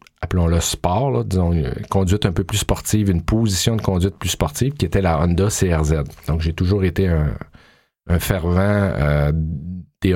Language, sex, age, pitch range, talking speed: French, male, 40-59, 85-100 Hz, 175 wpm